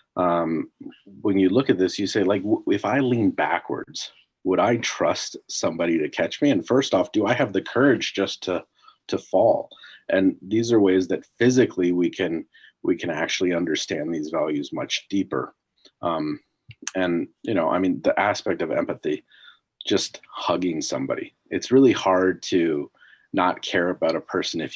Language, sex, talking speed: English, male, 170 wpm